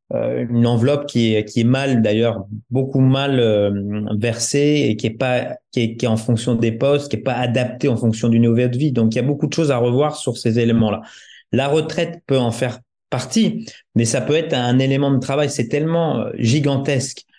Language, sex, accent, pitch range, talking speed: French, male, French, 115-140 Hz, 215 wpm